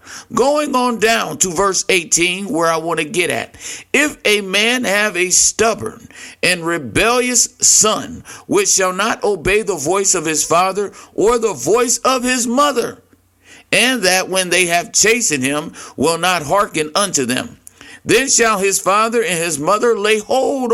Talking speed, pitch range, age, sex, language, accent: 165 wpm, 180-240 Hz, 50-69, male, English, American